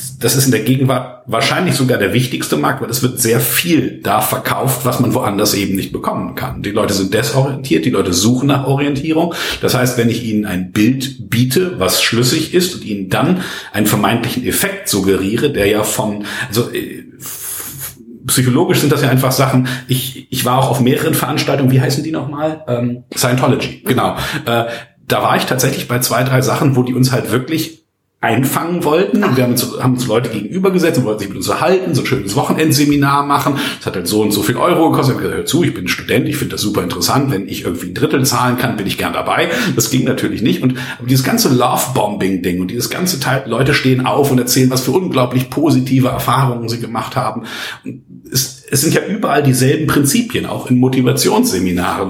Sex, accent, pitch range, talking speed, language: male, German, 115-140 Hz, 205 wpm, German